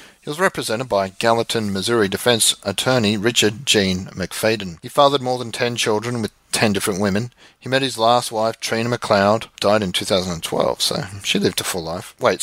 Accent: Australian